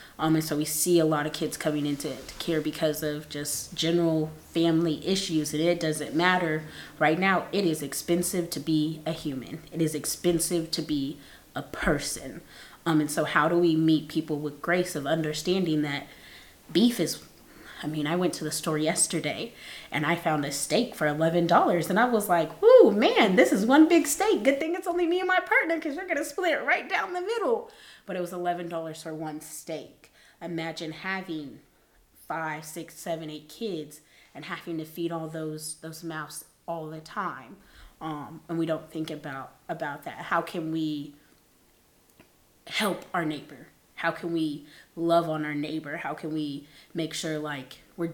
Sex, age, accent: female, 20-39, American